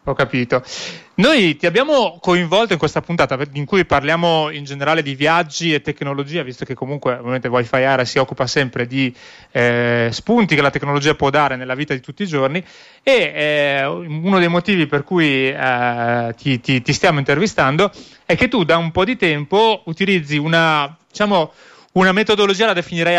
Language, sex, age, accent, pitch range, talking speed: Italian, male, 30-49, native, 135-175 Hz, 180 wpm